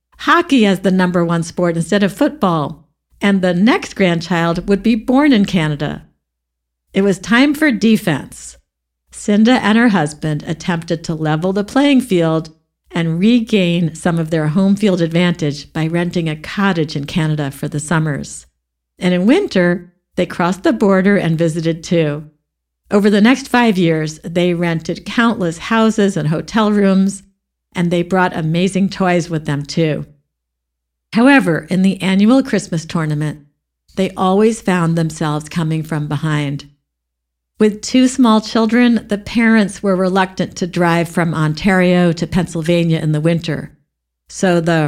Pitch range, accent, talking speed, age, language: 155-195 Hz, American, 150 wpm, 50-69, English